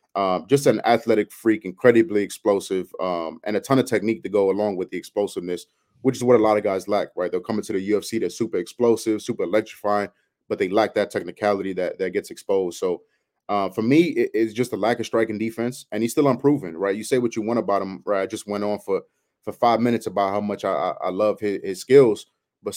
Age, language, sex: 30-49, English, male